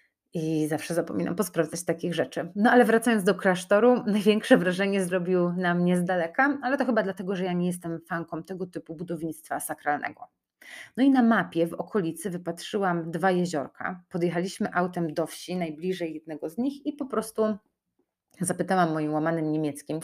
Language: Polish